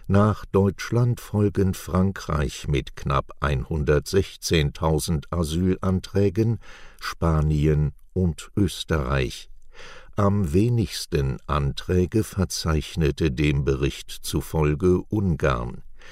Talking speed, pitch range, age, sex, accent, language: 70 wpm, 75-95 Hz, 60-79, male, German, German